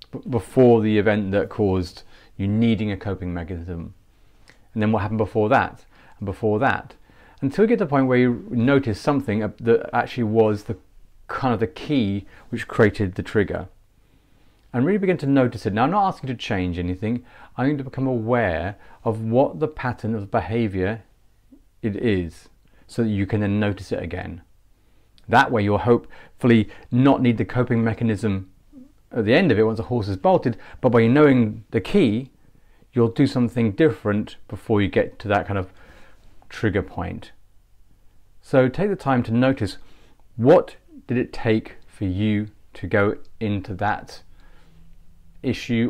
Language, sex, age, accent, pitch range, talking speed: English, male, 40-59, British, 95-120 Hz, 170 wpm